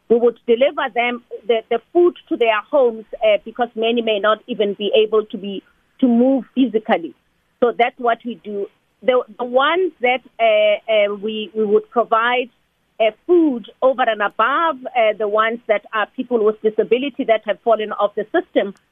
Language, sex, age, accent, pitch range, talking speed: English, female, 40-59, South African, 220-265 Hz, 180 wpm